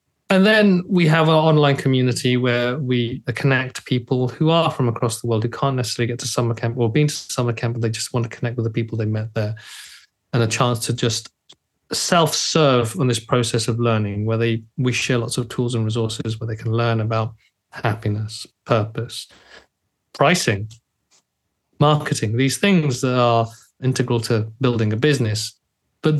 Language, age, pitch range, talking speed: English, 30-49, 115-135 Hz, 185 wpm